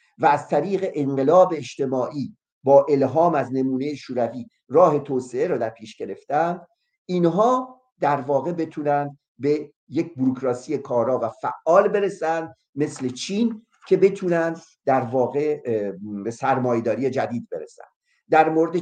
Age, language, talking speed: 50-69, English, 125 wpm